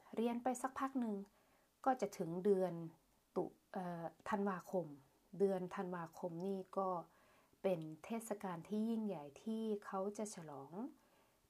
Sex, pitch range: female, 170-215 Hz